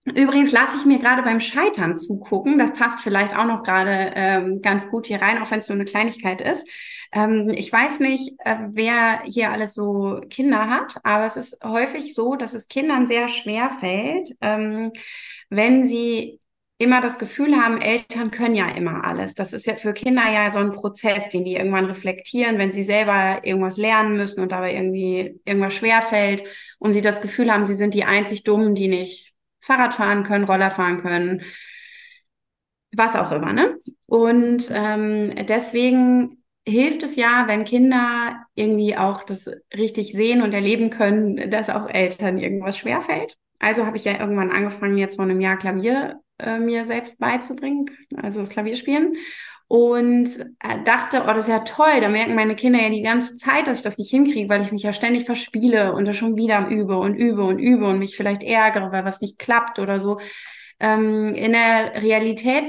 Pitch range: 205-245 Hz